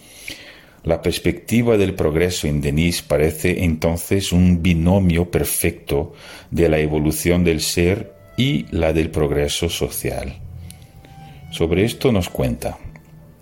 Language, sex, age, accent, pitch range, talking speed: Portuguese, male, 40-59, Spanish, 75-95 Hz, 110 wpm